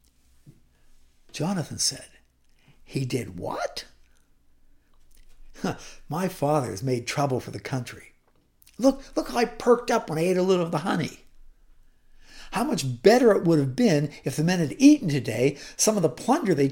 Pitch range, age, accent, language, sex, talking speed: 135-205 Hz, 60-79, American, English, male, 165 wpm